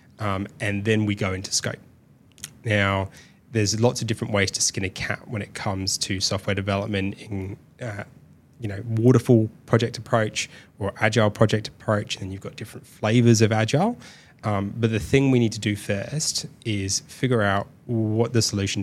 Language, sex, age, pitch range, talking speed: English, male, 20-39, 100-120 Hz, 180 wpm